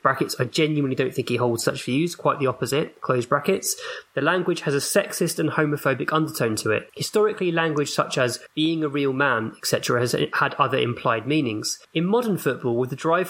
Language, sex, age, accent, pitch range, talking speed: English, male, 20-39, British, 130-160 Hz, 200 wpm